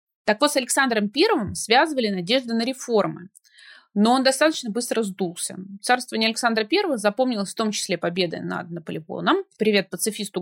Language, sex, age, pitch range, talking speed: Russian, female, 20-39, 190-260 Hz, 150 wpm